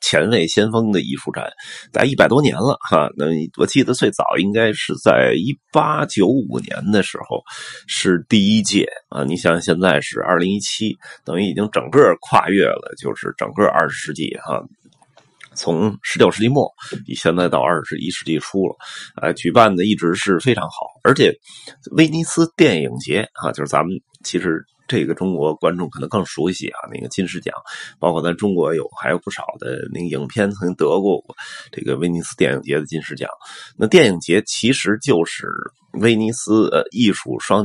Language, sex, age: Chinese, male, 30-49